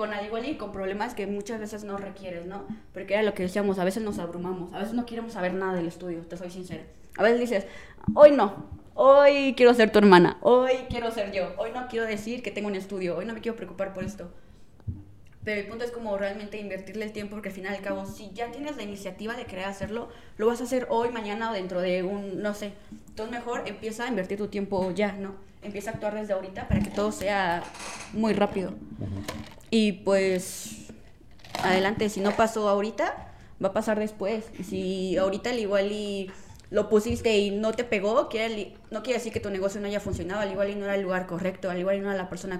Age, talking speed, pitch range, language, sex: 20-39, 230 wpm, 185-215 Hz, Spanish, female